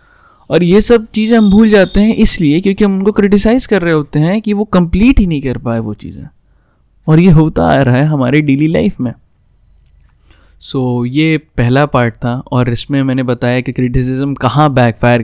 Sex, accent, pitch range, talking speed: male, native, 125-160 Hz, 195 wpm